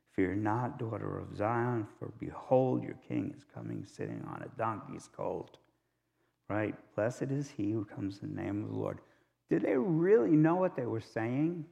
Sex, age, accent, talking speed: male, 60-79, American, 185 wpm